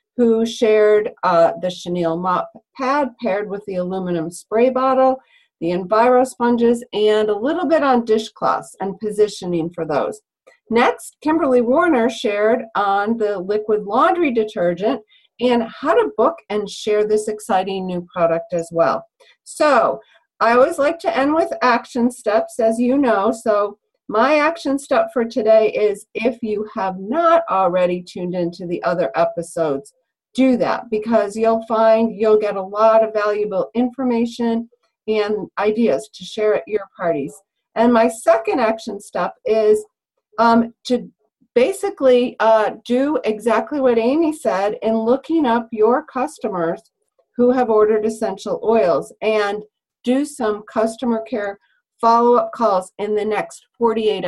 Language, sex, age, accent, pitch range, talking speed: English, female, 40-59, American, 195-245 Hz, 145 wpm